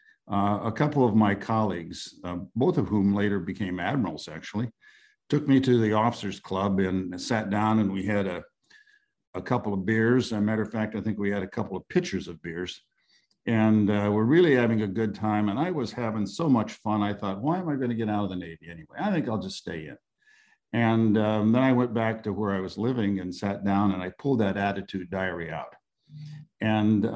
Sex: male